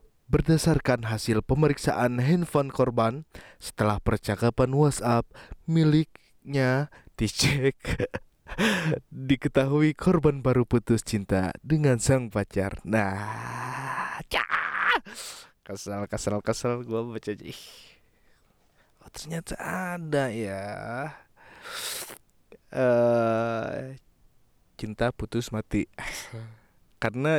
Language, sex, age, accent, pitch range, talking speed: Indonesian, male, 20-39, native, 105-140 Hz, 75 wpm